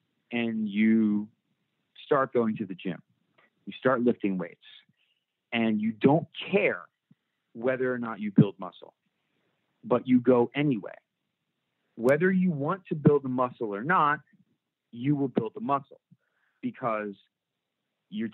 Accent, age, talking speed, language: American, 40-59, 135 wpm, English